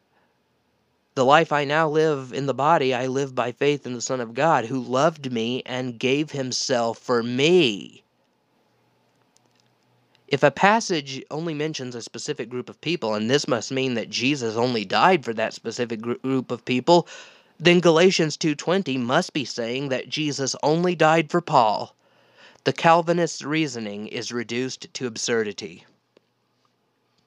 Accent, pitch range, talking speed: American, 120-155 Hz, 150 wpm